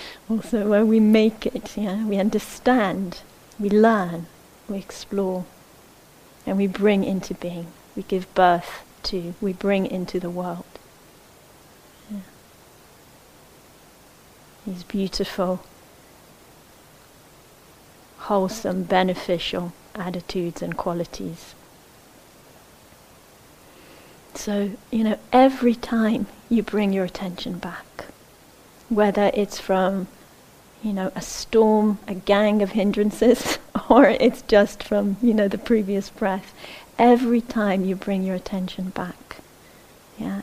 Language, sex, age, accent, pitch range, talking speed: English, female, 30-49, British, 185-215 Hz, 105 wpm